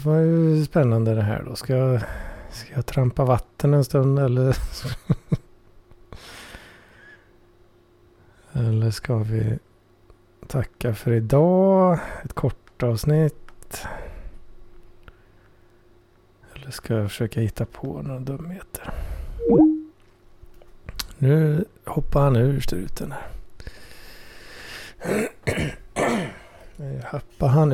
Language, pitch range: Swedish, 105-135 Hz